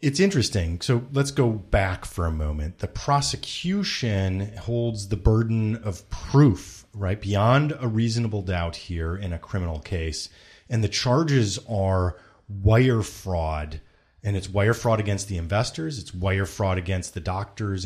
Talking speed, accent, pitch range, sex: 150 wpm, American, 100-140 Hz, male